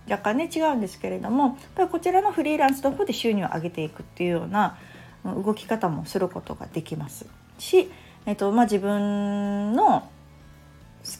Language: Japanese